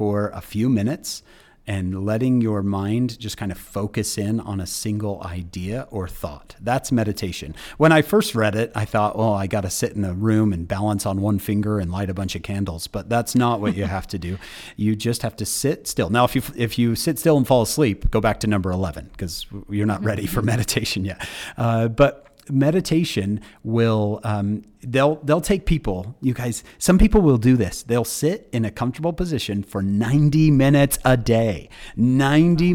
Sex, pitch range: male, 100-125 Hz